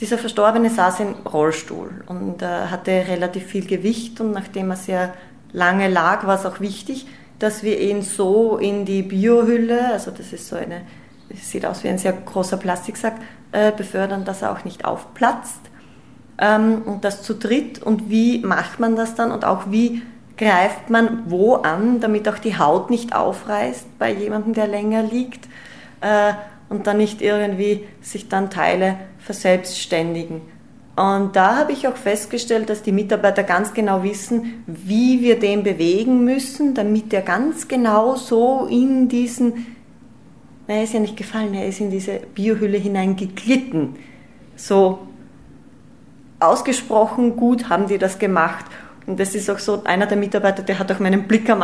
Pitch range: 195-230 Hz